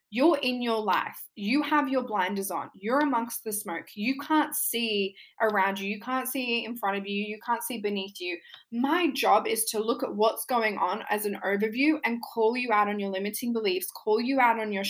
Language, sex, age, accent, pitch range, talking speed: English, female, 10-29, Australian, 195-245 Hz, 220 wpm